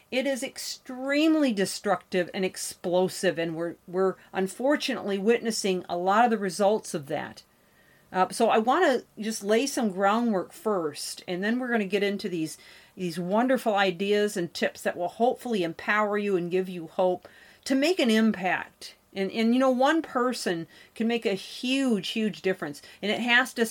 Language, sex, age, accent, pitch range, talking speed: English, female, 40-59, American, 185-230 Hz, 175 wpm